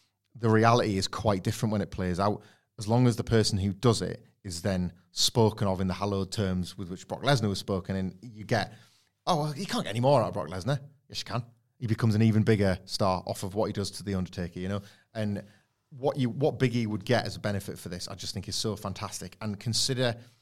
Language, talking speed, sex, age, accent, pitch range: English, 245 wpm, male, 30-49, British, 95-120 Hz